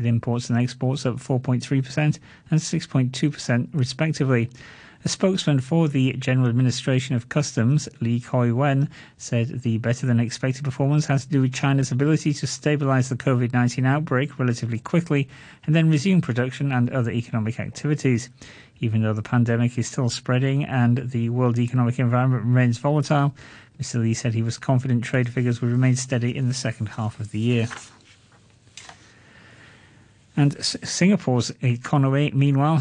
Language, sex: English, male